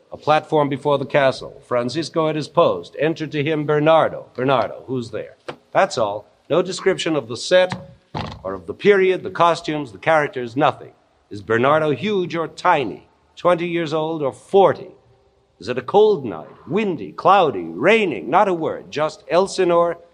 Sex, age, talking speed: male, 50-69, 165 wpm